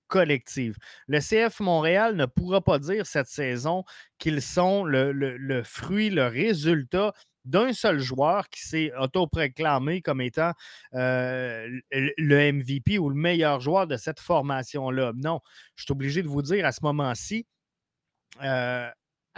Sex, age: male, 20-39